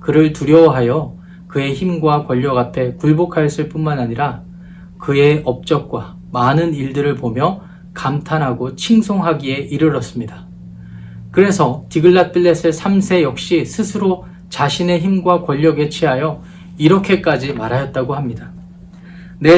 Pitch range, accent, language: 130-175 Hz, native, Korean